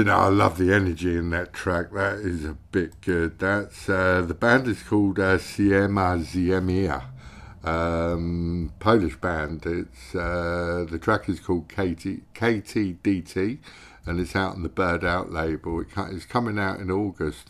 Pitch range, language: 80-95 Hz, English